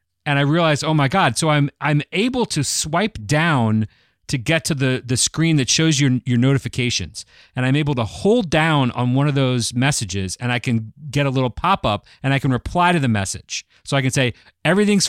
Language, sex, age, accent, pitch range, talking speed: English, male, 40-59, American, 115-165 Hz, 215 wpm